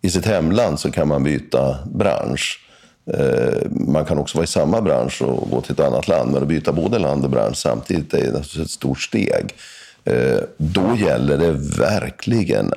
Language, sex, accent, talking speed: Swedish, male, native, 175 wpm